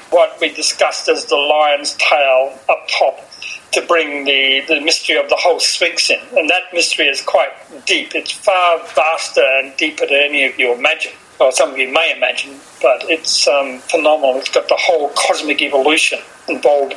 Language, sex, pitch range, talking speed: English, male, 155-245 Hz, 185 wpm